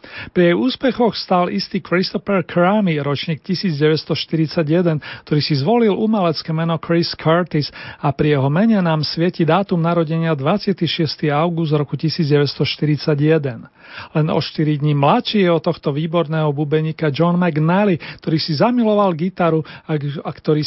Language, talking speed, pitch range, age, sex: Slovak, 135 wpm, 150-185 Hz, 40-59, male